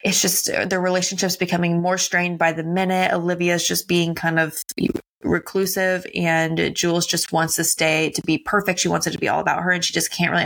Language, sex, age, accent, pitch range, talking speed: English, female, 20-39, American, 170-195 Hz, 220 wpm